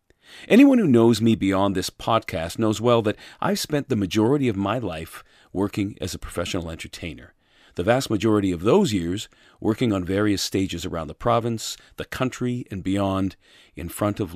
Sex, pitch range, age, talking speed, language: male, 90-120 Hz, 40-59, 175 wpm, English